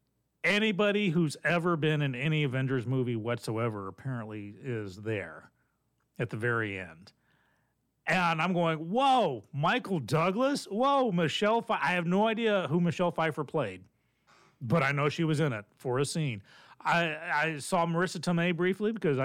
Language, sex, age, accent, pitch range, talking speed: English, male, 40-59, American, 130-165 Hz, 155 wpm